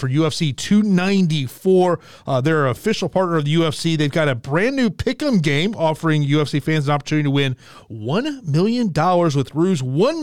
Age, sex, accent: 30-49, male, American